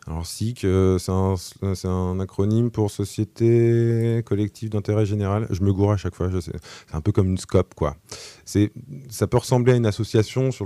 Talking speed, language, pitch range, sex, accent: 195 wpm, French, 85-110 Hz, male, French